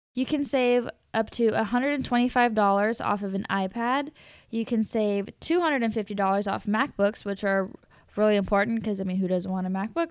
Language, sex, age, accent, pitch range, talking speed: English, female, 10-29, American, 205-250 Hz, 165 wpm